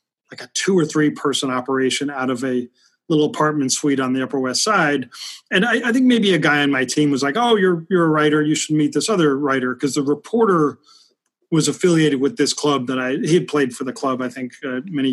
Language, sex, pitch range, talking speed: English, male, 135-165 Hz, 240 wpm